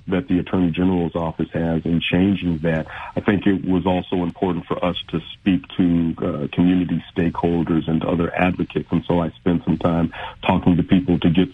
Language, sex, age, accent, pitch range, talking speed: English, male, 50-69, American, 80-90 Hz, 190 wpm